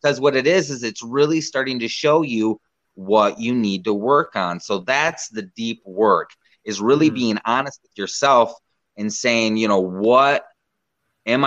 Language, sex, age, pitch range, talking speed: English, male, 30-49, 105-135 Hz, 180 wpm